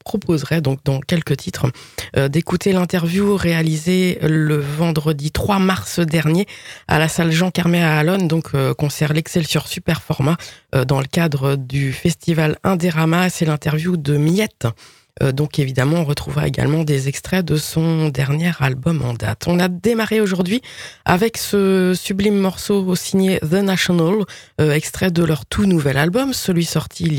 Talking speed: 155 wpm